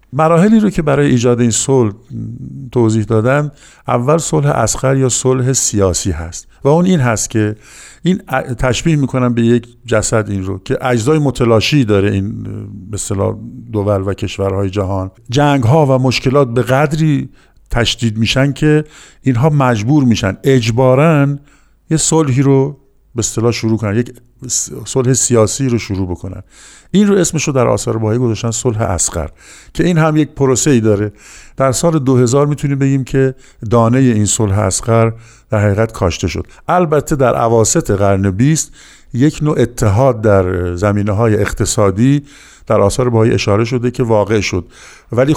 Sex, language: male, Persian